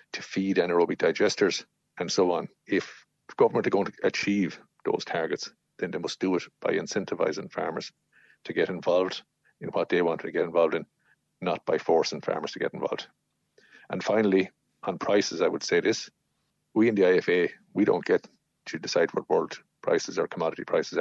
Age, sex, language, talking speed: 50-69, male, English, 185 wpm